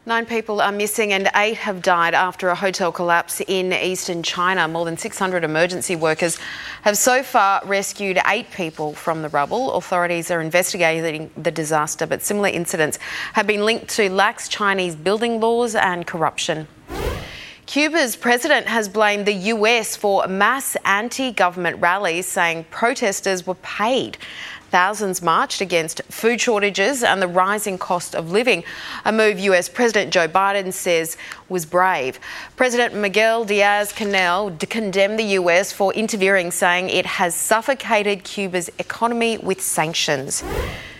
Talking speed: 140 wpm